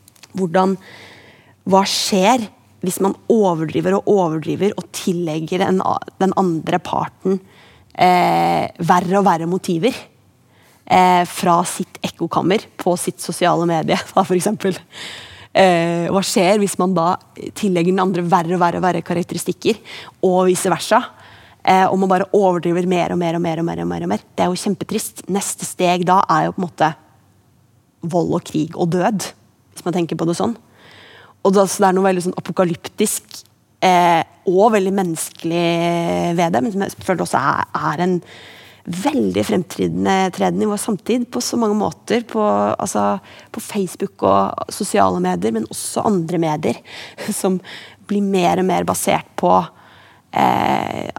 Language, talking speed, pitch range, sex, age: Danish, 150 wpm, 170-195 Hz, female, 20-39